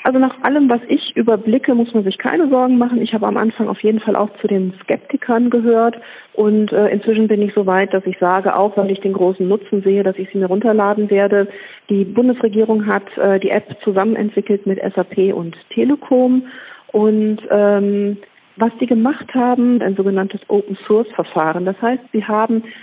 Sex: female